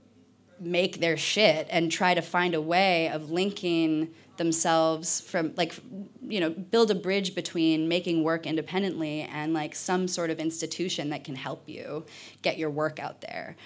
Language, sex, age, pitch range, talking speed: Danish, female, 20-39, 160-180 Hz, 165 wpm